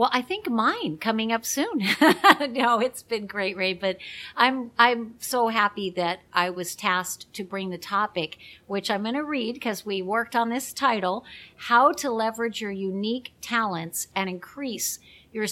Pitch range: 185-235 Hz